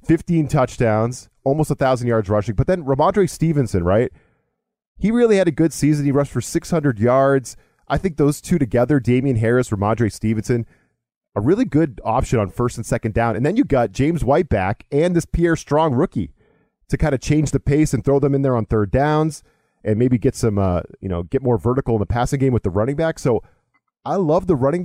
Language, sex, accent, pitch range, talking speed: English, male, American, 110-140 Hz, 220 wpm